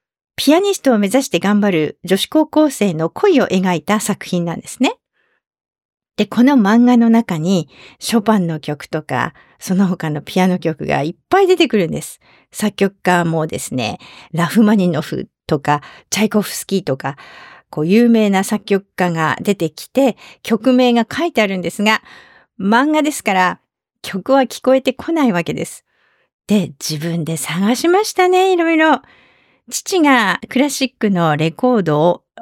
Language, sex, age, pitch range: English, female, 50-69, 175-260 Hz